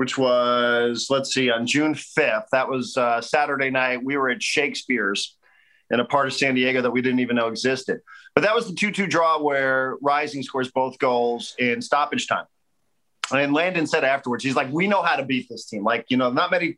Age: 40-59